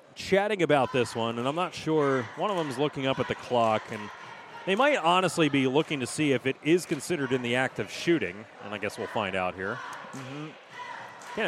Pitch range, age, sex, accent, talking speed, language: 115-155 Hz, 30-49, male, American, 230 wpm, English